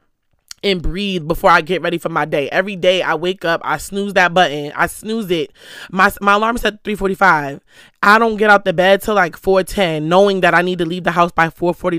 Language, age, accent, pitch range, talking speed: English, 20-39, American, 175-205 Hz, 230 wpm